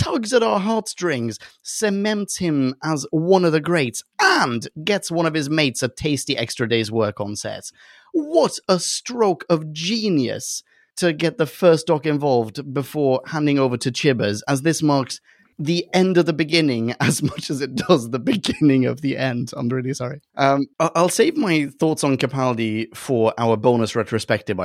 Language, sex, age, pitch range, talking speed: English, male, 30-49, 125-180 Hz, 175 wpm